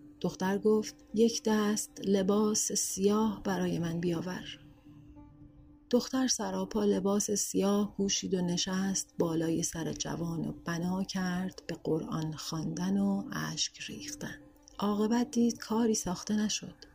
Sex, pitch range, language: female, 165-220 Hz, Persian